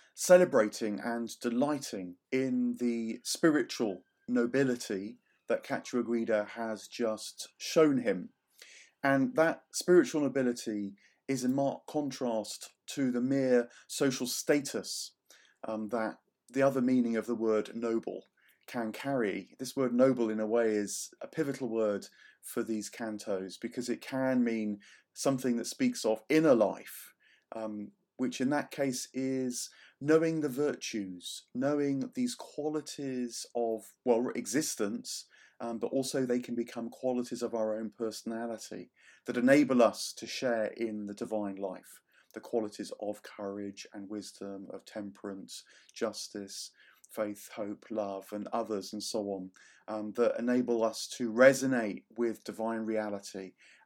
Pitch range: 110-130 Hz